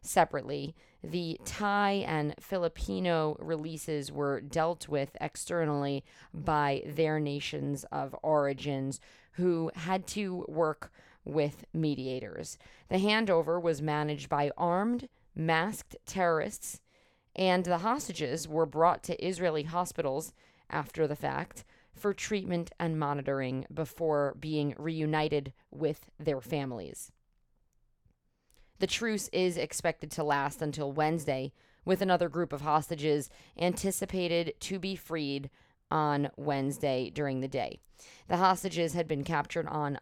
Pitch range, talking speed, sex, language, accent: 145-175 Hz, 115 wpm, female, English, American